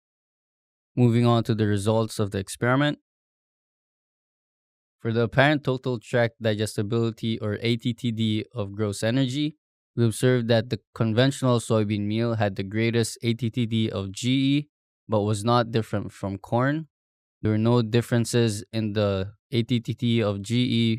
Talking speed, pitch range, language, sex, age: 135 wpm, 105-120 Hz, English, male, 20-39